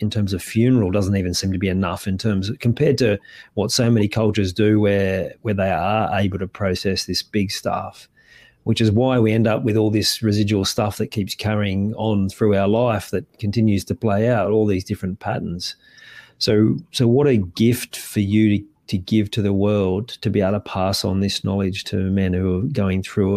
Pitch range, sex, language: 100-115 Hz, male, English